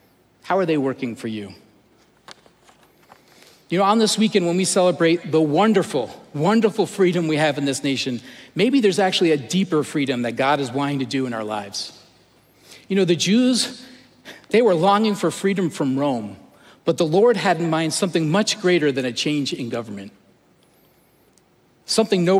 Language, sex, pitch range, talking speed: English, male, 145-195 Hz, 175 wpm